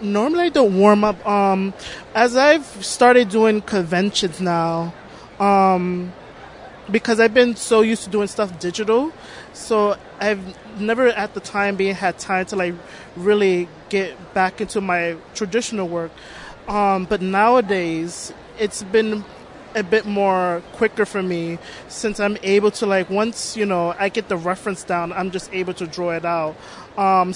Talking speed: 160 wpm